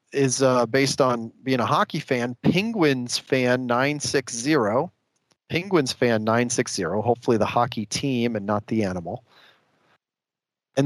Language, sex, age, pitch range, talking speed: English, male, 40-59, 115-140 Hz, 150 wpm